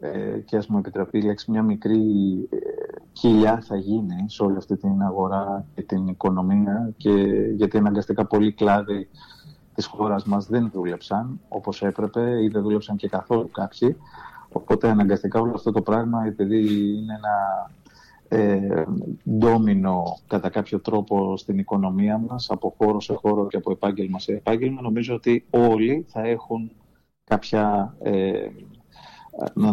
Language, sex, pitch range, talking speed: Greek, male, 100-115 Hz, 145 wpm